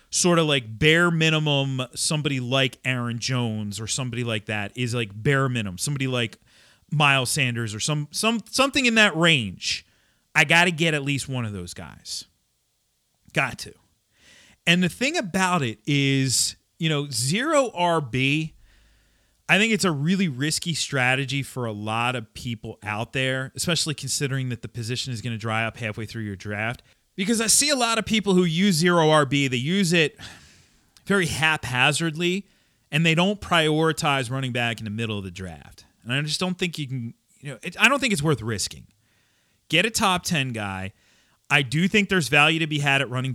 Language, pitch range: English, 120-165 Hz